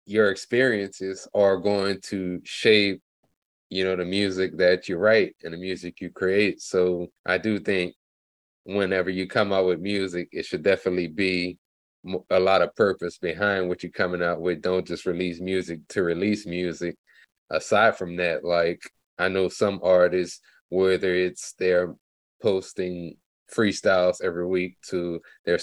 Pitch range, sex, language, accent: 85-95 Hz, male, English, American